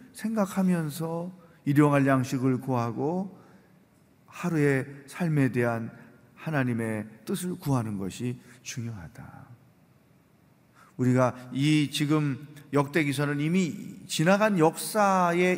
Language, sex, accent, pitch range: Korean, male, native, 135-190 Hz